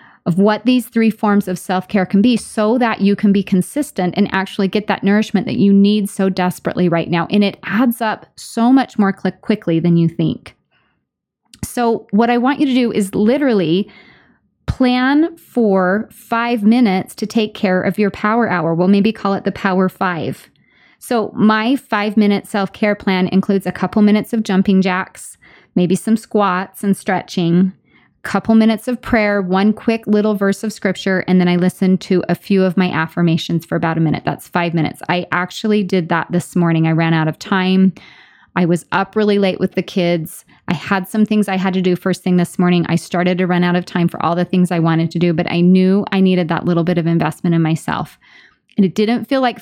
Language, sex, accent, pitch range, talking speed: English, female, American, 180-215 Hz, 210 wpm